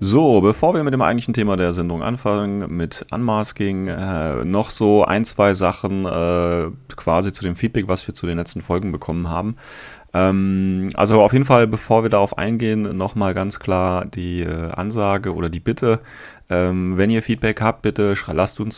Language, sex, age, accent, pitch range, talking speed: German, male, 30-49, German, 90-110 Hz, 180 wpm